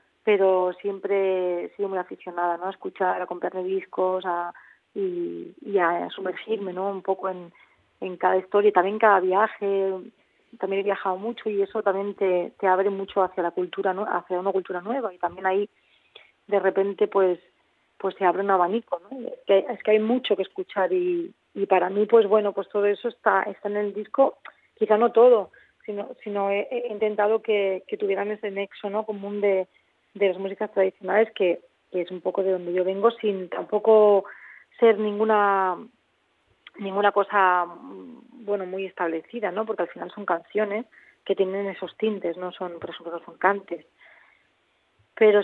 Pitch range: 185-210 Hz